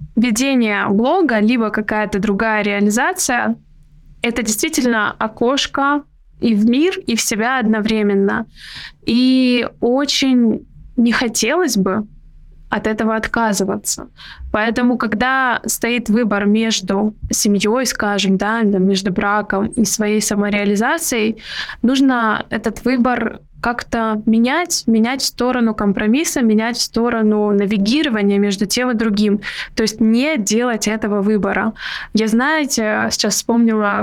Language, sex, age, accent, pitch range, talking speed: Russian, female, 20-39, native, 205-245 Hz, 115 wpm